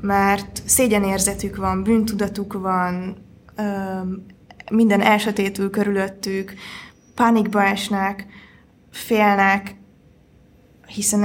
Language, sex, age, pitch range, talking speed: Hungarian, female, 20-39, 195-220 Hz, 65 wpm